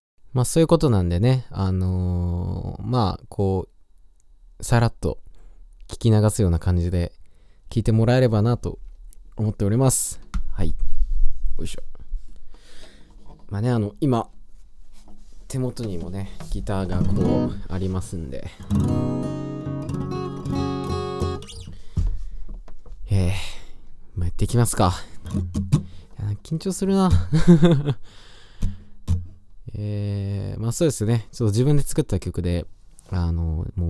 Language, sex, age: Japanese, male, 20-39